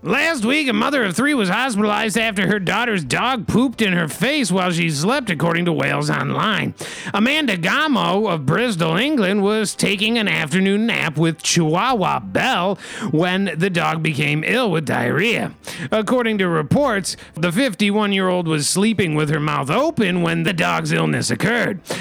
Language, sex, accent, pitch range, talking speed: English, male, American, 165-225 Hz, 160 wpm